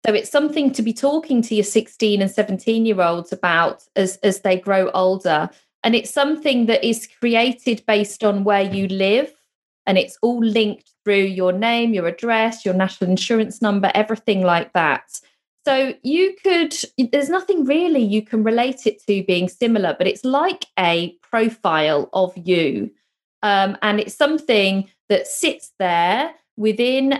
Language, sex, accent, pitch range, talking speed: English, female, British, 195-240 Hz, 165 wpm